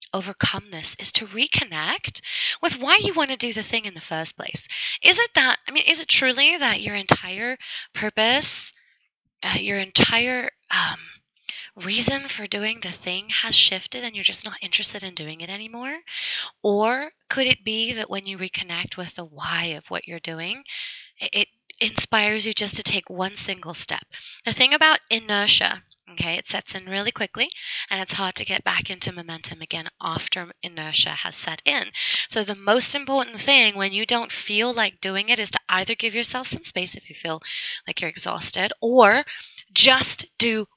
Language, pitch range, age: English, 185-245 Hz, 20-39